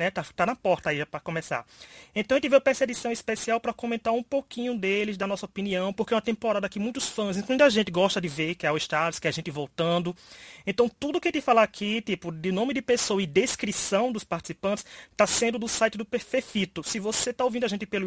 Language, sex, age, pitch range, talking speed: English, male, 20-39, 175-230 Hz, 250 wpm